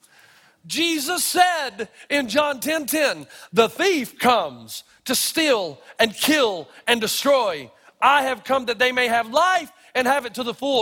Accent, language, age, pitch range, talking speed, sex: American, English, 40-59, 215-290 Hz, 160 wpm, male